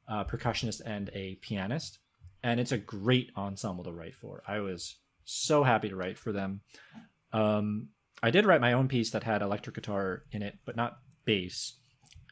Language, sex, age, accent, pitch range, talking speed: English, male, 30-49, American, 100-125 Hz, 180 wpm